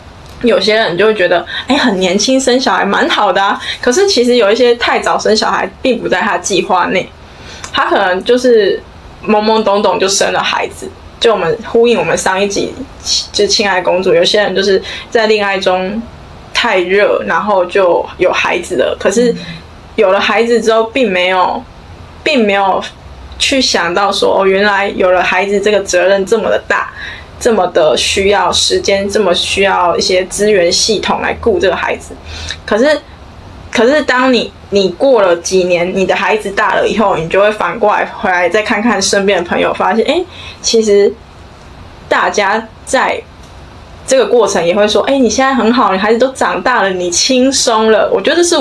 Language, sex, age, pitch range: Chinese, female, 10-29, 190-245 Hz